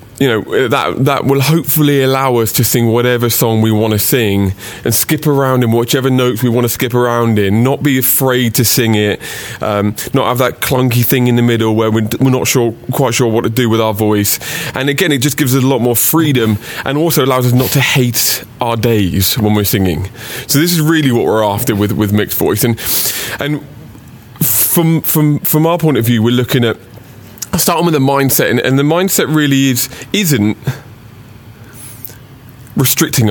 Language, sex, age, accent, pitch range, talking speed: English, male, 20-39, British, 115-145 Hz, 205 wpm